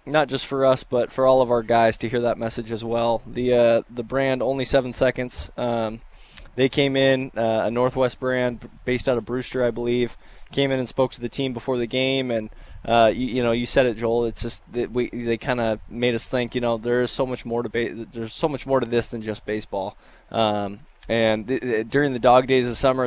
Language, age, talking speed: English, 20-39, 240 wpm